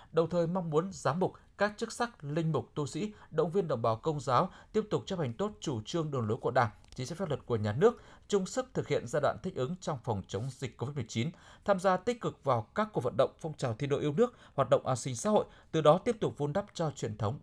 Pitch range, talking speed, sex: 120-185 Hz, 280 wpm, male